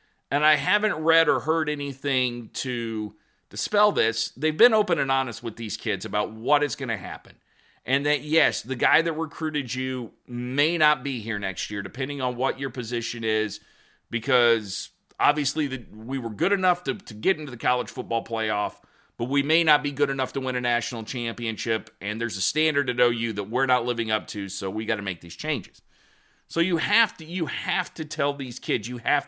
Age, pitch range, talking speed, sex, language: 40-59, 115-160 Hz, 210 wpm, male, English